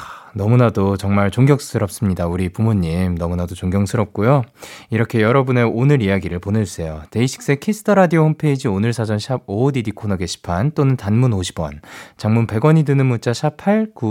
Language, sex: Korean, male